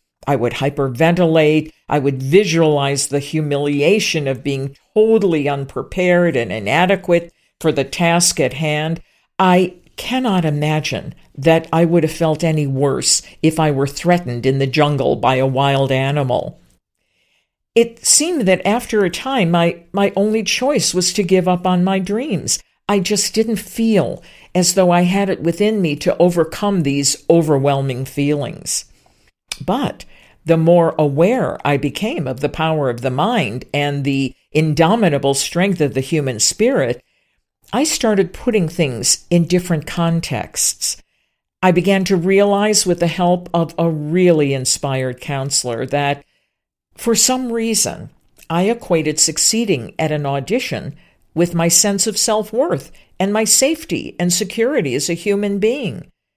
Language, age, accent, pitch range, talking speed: English, 50-69, American, 145-195 Hz, 145 wpm